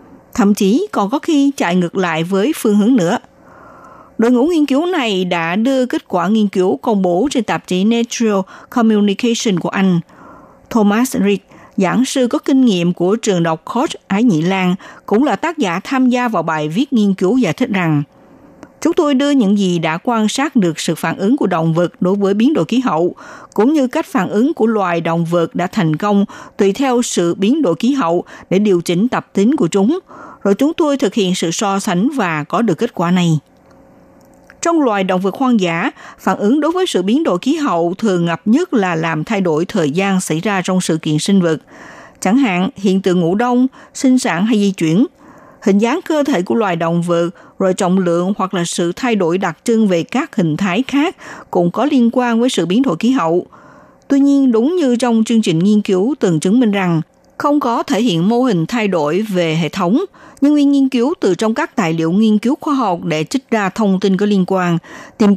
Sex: female